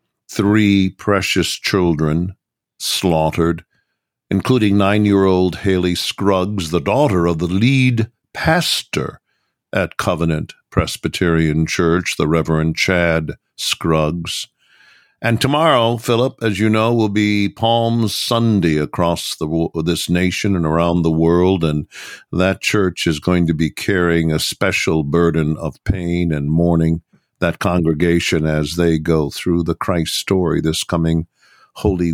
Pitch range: 80-100 Hz